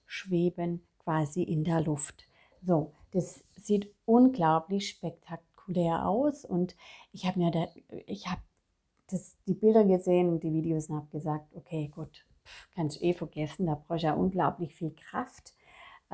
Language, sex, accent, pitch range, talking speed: German, female, German, 165-200 Hz, 150 wpm